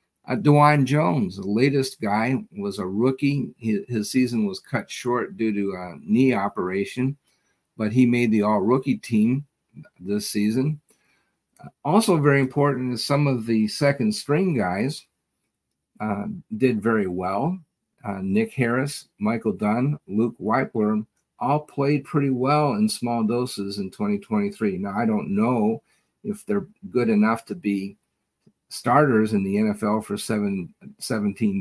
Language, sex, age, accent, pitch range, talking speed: English, male, 50-69, American, 100-150 Hz, 140 wpm